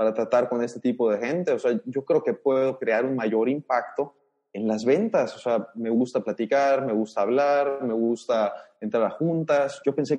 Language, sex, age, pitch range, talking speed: Spanish, male, 30-49, 115-140 Hz, 205 wpm